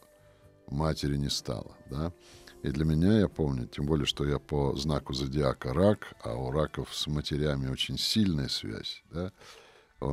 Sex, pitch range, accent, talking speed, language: male, 70-85 Hz, native, 160 wpm, Russian